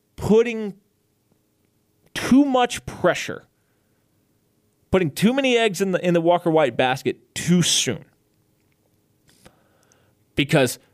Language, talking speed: English, 100 wpm